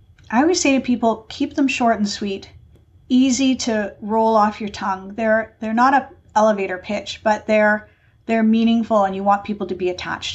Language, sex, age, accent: English, female, 50-69, American